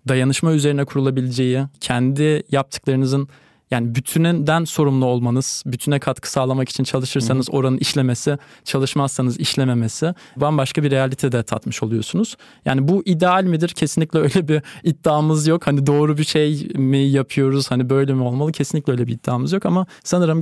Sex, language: male, Turkish